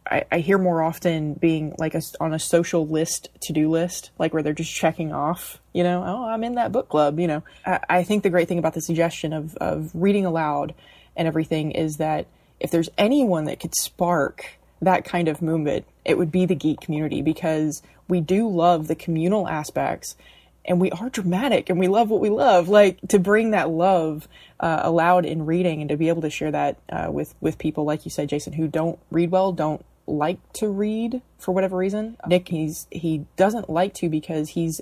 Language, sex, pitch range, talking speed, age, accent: English, female, 155-185 Hz, 210 wpm, 20-39, American